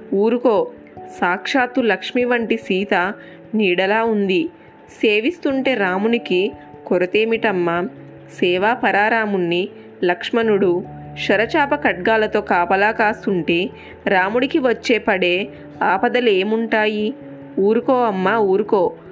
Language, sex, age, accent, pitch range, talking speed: Telugu, female, 20-39, native, 190-240 Hz, 75 wpm